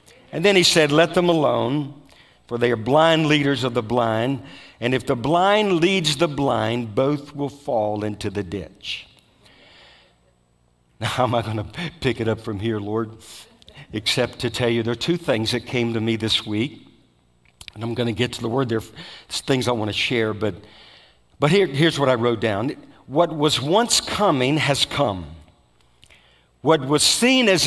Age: 50-69